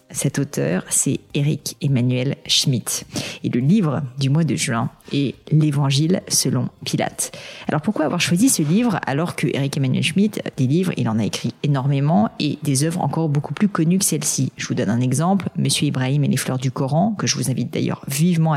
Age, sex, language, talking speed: 40-59, female, French, 215 wpm